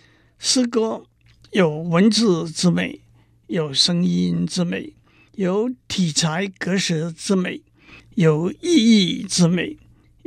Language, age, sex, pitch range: Chinese, 60-79, male, 165-220 Hz